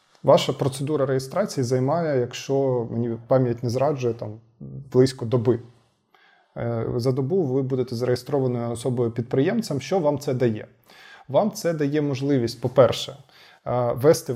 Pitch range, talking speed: 125-150 Hz, 115 wpm